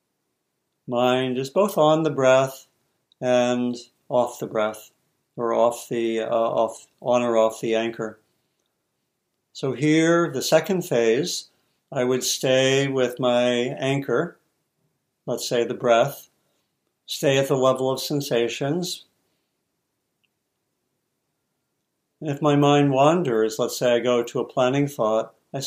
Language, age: English, 60-79